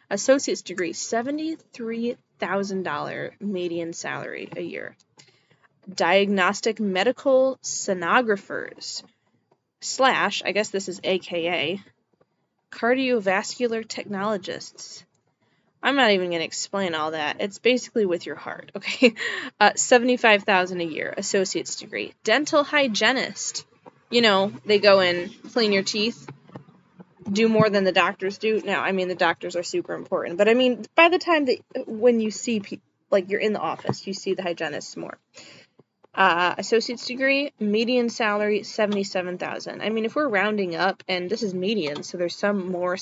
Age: 20-39